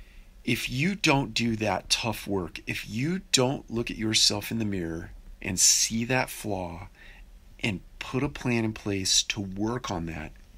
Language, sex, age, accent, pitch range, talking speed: English, male, 40-59, American, 95-125 Hz, 170 wpm